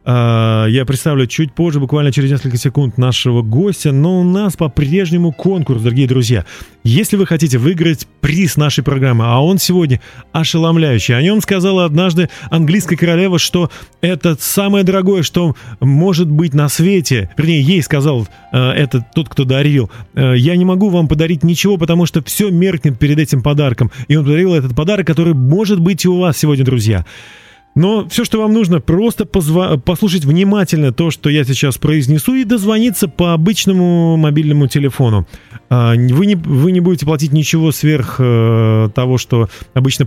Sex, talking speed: male, 160 wpm